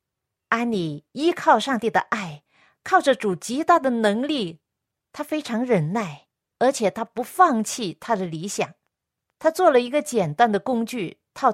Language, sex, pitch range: Chinese, female, 190-270 Hz